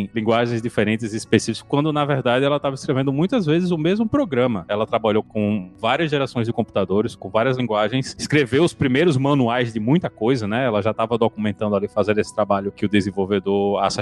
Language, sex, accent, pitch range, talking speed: Portuguese, male, Brazilian, 105-130 Hz, 190 wpm